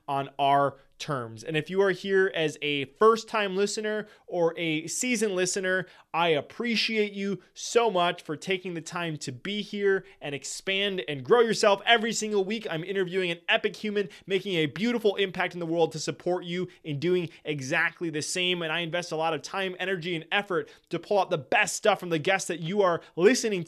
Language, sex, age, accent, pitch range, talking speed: English, male, 20-39, American, 165-210 Hz, 200 wpm